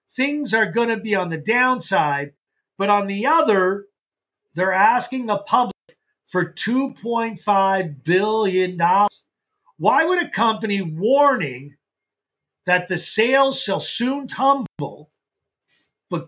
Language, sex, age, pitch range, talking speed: English, male, 50-69, 185-255 Hz, 115 wpm